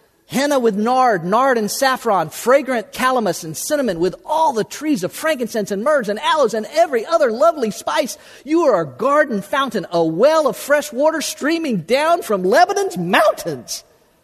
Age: 40-59